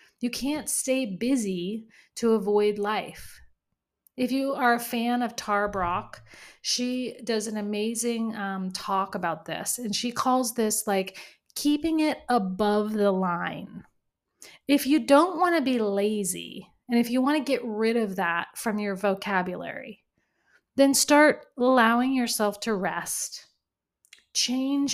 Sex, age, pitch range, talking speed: female, 30-49, 200-250 Hz, 140 wpm